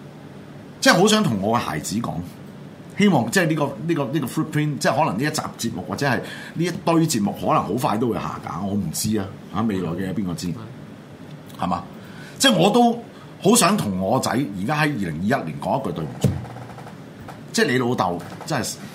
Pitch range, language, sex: 105-155 Hz, Chinese, male